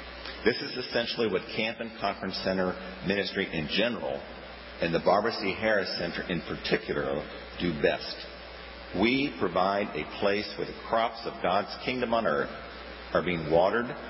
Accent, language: American, English